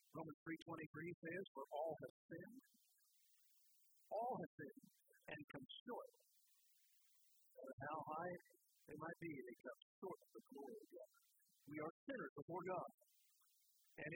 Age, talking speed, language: 50-69, 145 wpm, English